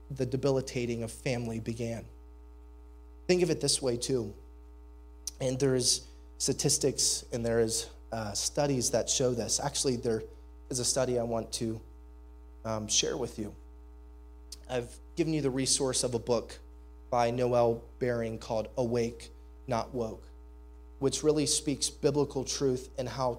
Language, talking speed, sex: English, 145 wpm, male